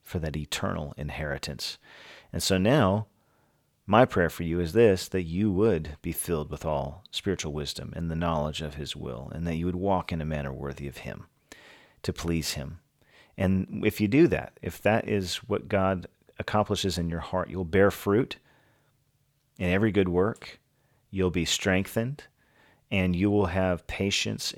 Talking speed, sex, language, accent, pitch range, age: 175 wpm, male, English, American, 85-105 Hz, 40-59